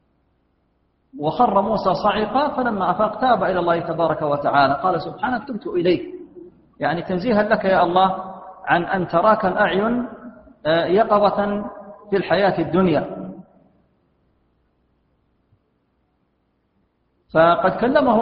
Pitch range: 175-225 Hz